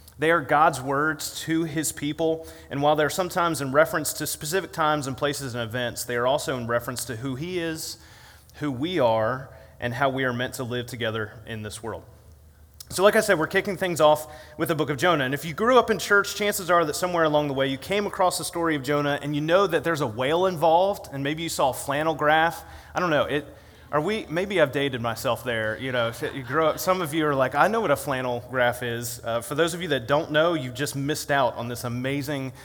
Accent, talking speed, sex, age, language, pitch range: American, 250 wpm, male, 30-49, English, 120-160 Hz